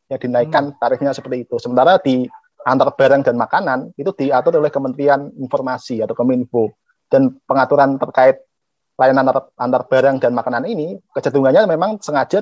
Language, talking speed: Indonesian, 145 wpm